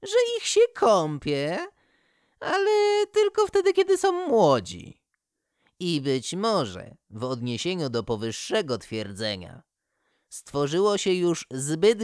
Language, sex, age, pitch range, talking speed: Polish, male, 20-39, 120-190 Hz, 110 wpm